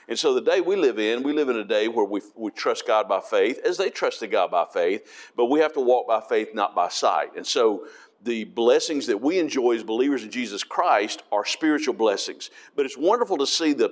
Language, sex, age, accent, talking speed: English, male, 50-69, American, 240 wpm